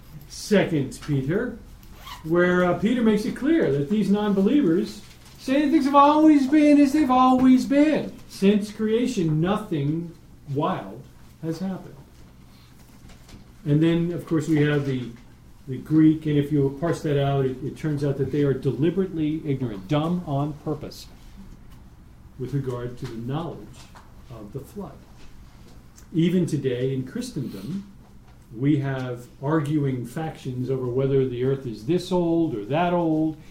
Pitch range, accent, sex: 135-190 Hz, American, male